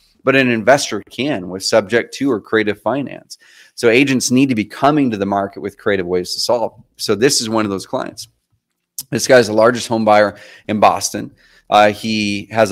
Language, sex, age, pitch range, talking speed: English, male, 30-49, 100-125 Hz, 200 wpm